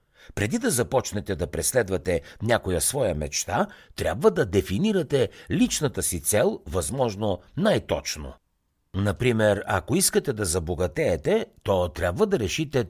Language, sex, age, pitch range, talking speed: Bulgarian, male, 60-79, 90-130 Hz, 115 wpm